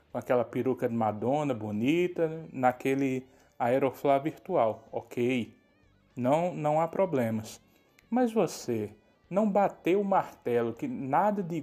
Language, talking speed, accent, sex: Portuguese, 115 wpm, Brazilian, male